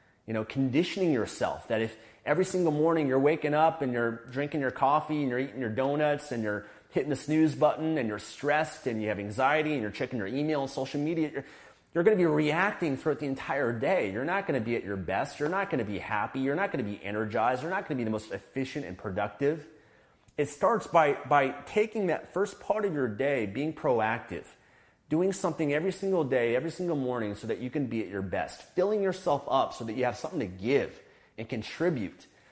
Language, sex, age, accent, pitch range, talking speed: English, male, 30-49, American, 110-155 Hz, 230 wpm